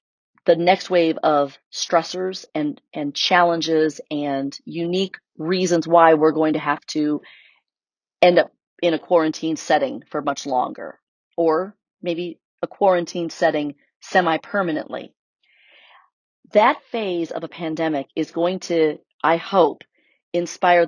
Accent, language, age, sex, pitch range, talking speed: American, English, 40-59, female, 160-195 Hz, 125 wpm